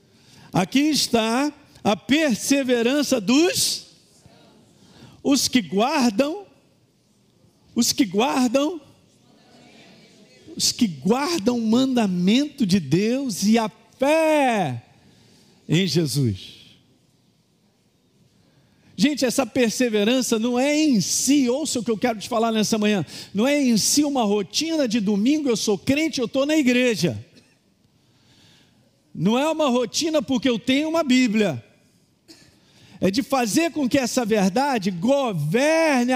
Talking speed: 120 wpm